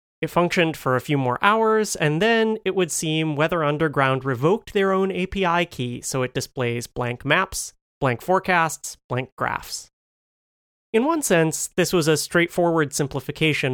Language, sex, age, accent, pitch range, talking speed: English, male, 30-49, American, 125-170 Hz, 155 wpm